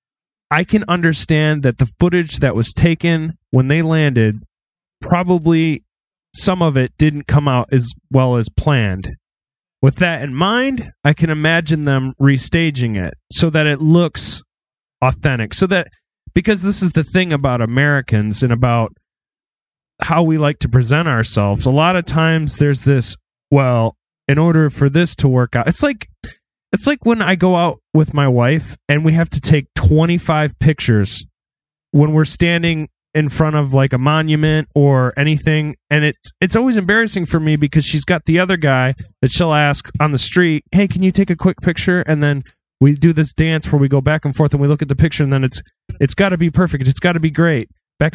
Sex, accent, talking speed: male, American, 190 wpm